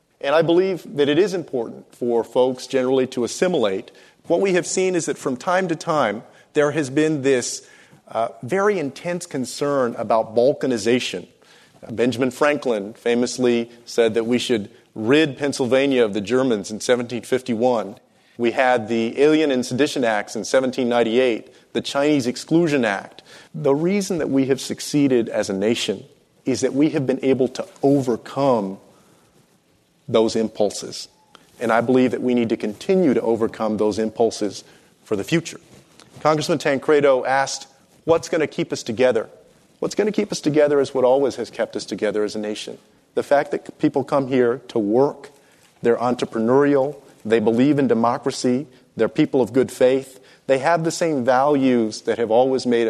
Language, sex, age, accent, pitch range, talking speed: English, male, 40-59, American, 115-145 Hz, 165 wpm